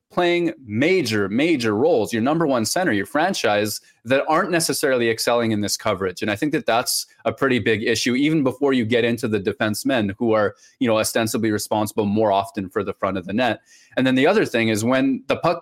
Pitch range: 105-145 Hz